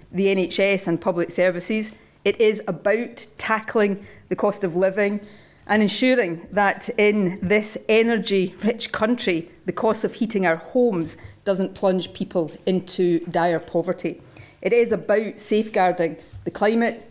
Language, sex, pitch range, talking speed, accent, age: English, female, 180-220 Hz, 135 wpm, British, 40-59